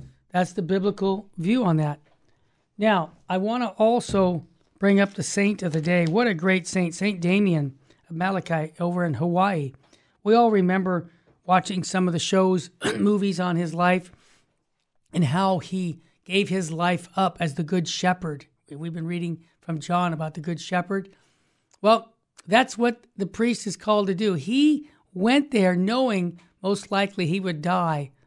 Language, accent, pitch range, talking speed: English, American, 160-205 Hz, 170 wpm